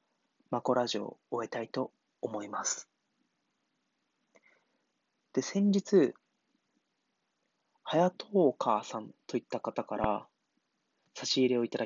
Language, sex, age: Japanese, male, 30-49